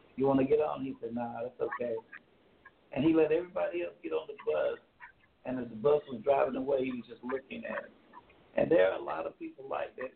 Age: 60-79